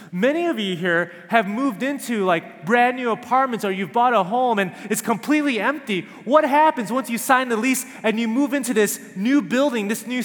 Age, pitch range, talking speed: 30-49, 195-250 Hz, 210 wpm